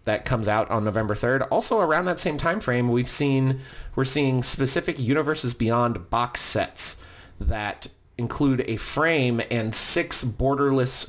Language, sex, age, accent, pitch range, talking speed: English, male, 30-49, American, 95-130 Hz, 150 wpm